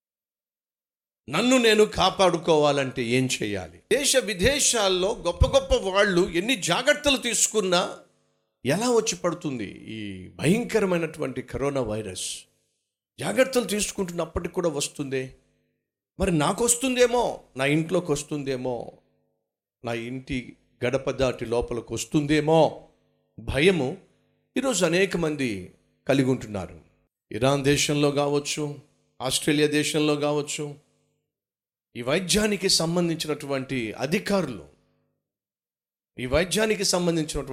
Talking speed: 85 wpm